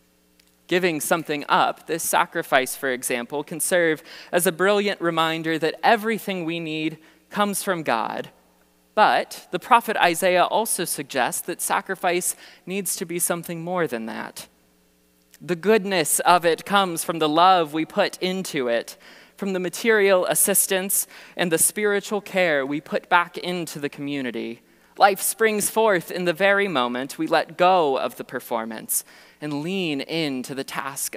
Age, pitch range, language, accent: 20-39, 125-180 Hz, English, American